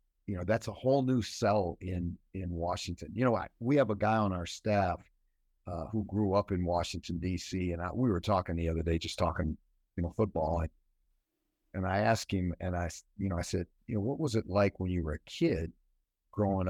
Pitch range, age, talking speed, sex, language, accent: 85-105 Hz, 50-69, 225 wpm, male, English, American